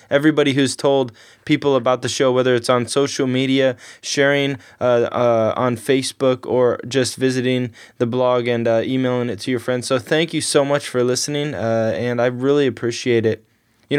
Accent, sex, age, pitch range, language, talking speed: American, male, 20-39, 120-140 Hz, English, 185 wpm